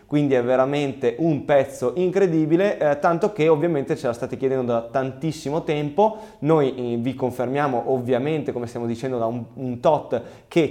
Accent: native